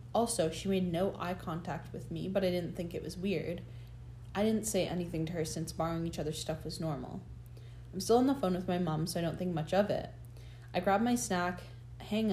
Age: 20-39